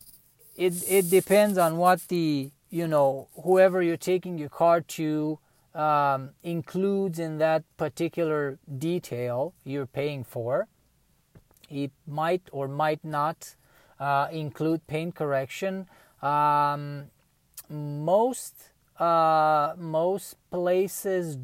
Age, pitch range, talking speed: 30-49, 145-180 Hz, 105 wpm